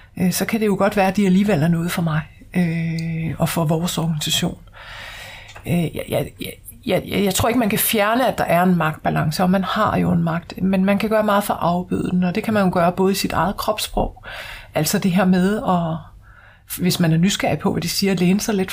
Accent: native